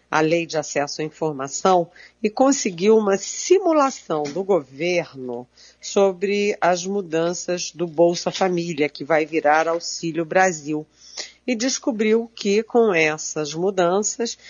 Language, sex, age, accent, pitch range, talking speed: Portuguese, female, 50-69, Brazilian, 155-210 Hz, 120 wpm